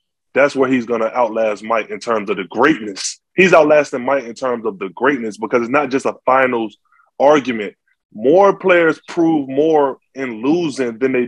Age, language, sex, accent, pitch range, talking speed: 20-39, English, male, American, 130-165 Hz, 185 wpm